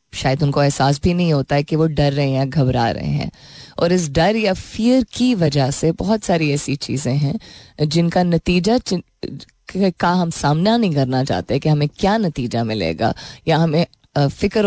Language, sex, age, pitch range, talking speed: Hindi, female, 20-39, 140-175 Hz, 180 wpm